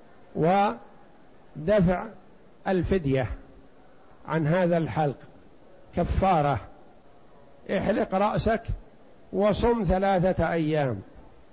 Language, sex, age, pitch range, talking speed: Arabic, male, 60-79, 175-205 Hz, 55 wpm